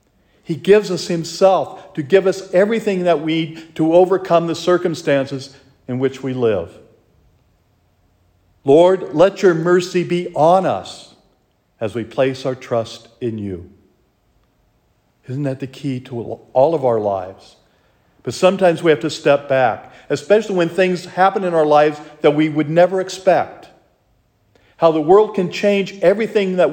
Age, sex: 50-69, male